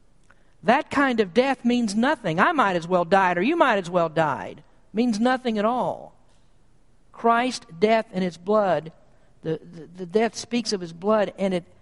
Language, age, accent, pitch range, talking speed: English, 50-69, American, 155-200 Hz, 190 wpm